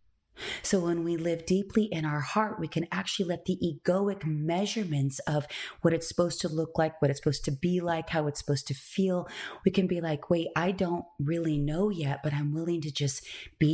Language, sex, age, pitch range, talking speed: English, female, 30-49, 140-170 Hz, 215 wpm